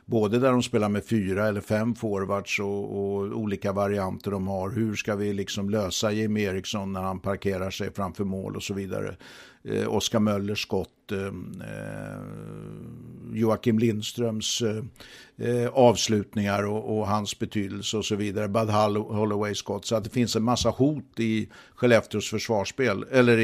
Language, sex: English, male